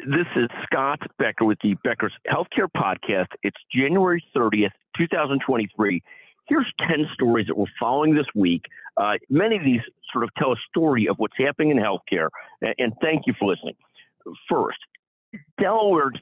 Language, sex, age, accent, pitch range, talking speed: English, male, 50-69, American, 115-170 Hz, 155 wpm